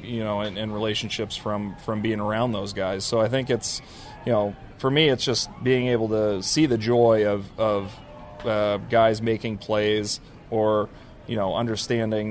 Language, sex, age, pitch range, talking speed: English, male, 30-49, 105-120 Hz, 175 wpm